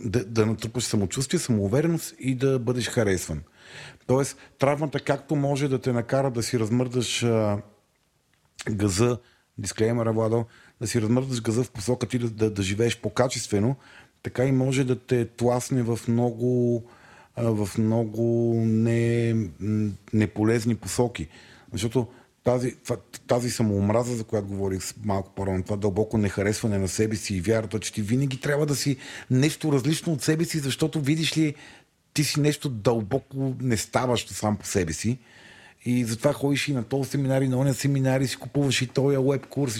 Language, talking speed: Bulgarian, 160 wpm